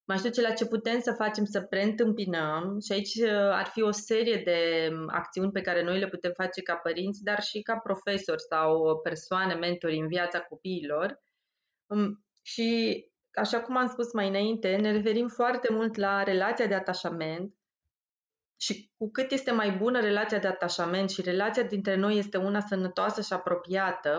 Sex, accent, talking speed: female, native, 170 wpm